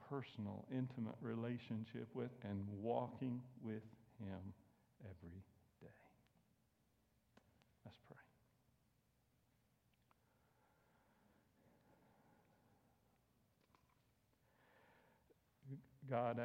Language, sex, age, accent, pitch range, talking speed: English, male, 60-79, American, 110-125 Hz, 45 wpm